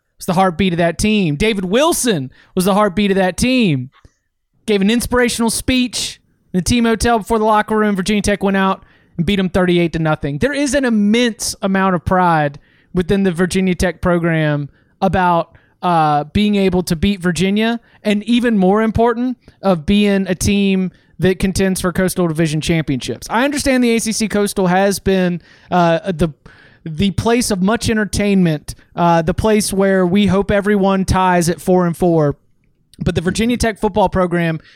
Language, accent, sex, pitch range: English, American, male, 175-210 Hz